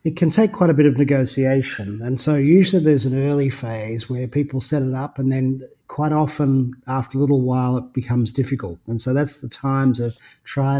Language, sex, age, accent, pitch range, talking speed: English, male, 40-59, Australian, 125-145 Hz, 210 wpm